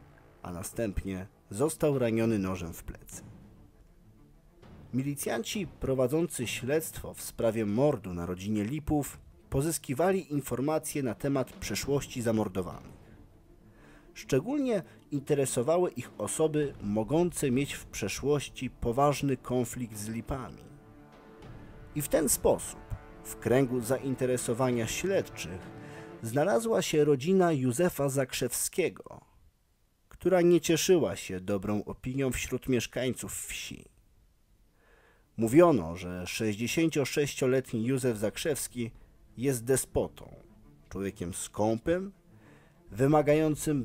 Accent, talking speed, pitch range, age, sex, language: native, 90 wpm, 105-145 Hz, 40-59, male, Polish